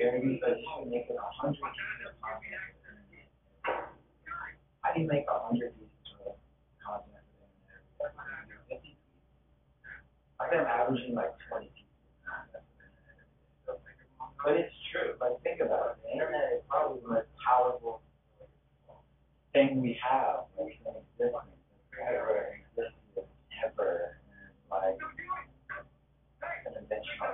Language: English